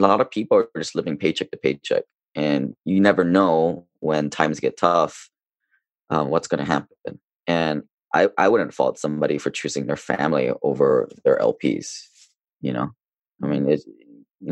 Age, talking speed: 20-39, 175 wpm